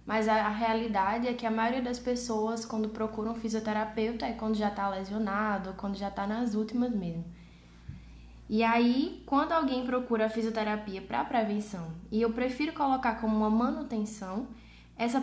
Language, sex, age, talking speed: Portuguese, female, 10-29, 165 wpm